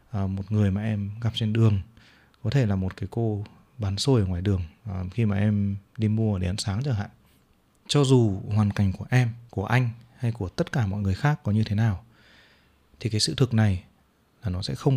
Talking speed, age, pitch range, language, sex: 235 wpm, 20-39, 100-125 Hz, Vietnamese, male